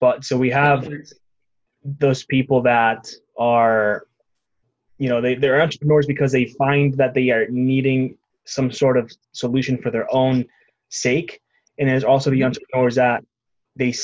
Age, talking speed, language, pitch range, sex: 20-39, 150 wpm, English, 110-130 Hz, male